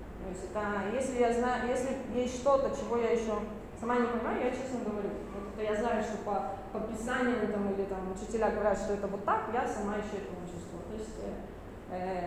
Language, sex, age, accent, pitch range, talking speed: Russian, female, 20-39, native, 200-240 Hz, 195 wpm